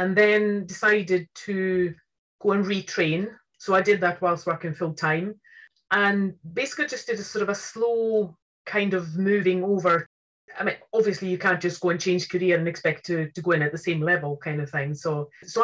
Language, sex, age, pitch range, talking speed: English, female, 30-49, 160-195 Hz, 205 wpm